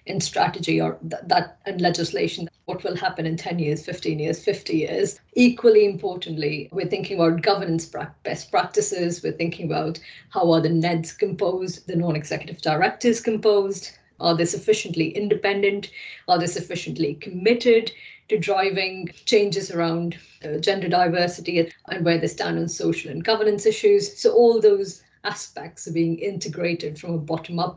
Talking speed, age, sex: 155 wpm, 30-49, female